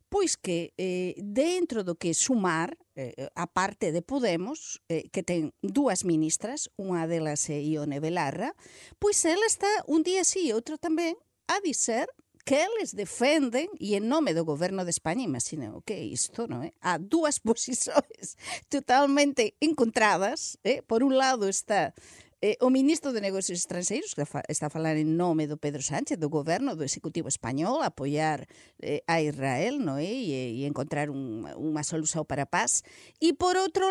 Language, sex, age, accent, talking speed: Portuguese, female, 50-69, Spanish, 165 wpm